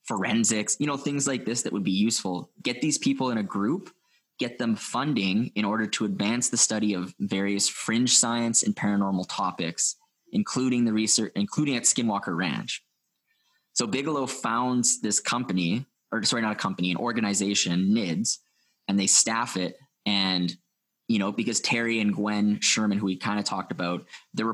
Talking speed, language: 175 wpm, English